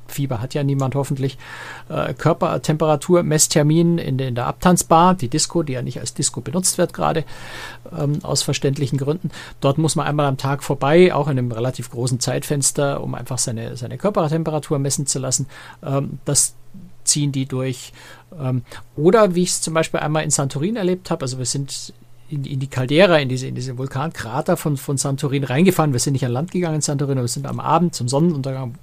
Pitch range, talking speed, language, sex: 130-155 Hz, 190 wpm, German, male